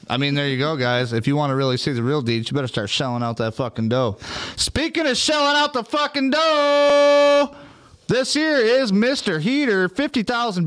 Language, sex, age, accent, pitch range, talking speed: English, male, 30-49, American, 115-170 Hz, 200 wpm